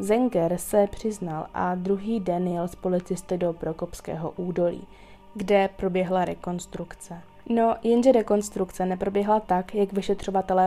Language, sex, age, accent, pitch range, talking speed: Czech, female, 20-39, native, 180-205 Hz, 125 wpm